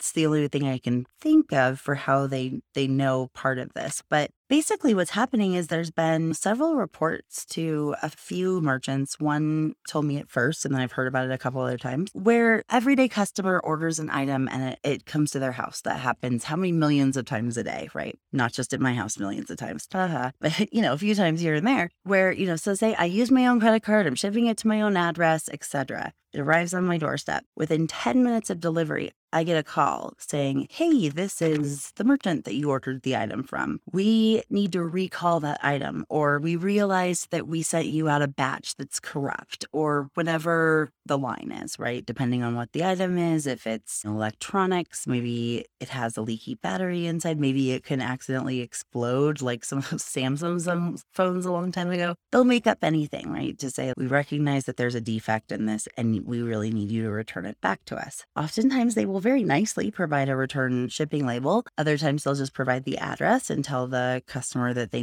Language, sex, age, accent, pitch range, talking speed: English, female, 20-39, American, 130-180 Hz, 215 wpm